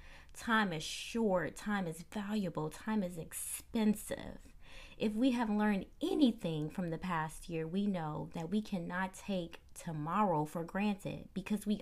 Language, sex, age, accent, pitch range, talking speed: English, female, 20-39, American, 170-220 Hz, 145 wpm